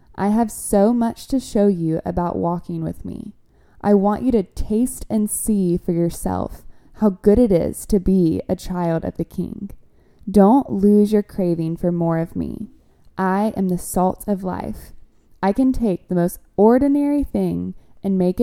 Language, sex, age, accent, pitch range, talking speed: English, female, 20-39, American, 175-215 Hz, 175 wpm